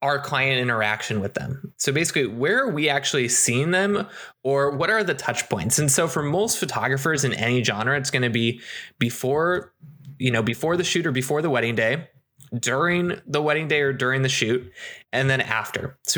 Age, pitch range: 20-39, 125-150 Hz